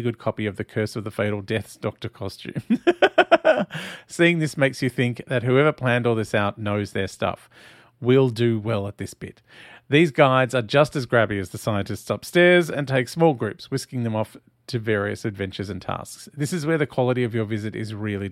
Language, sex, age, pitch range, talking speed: English, male, 40-59, 105-130 Hz, 205 wpm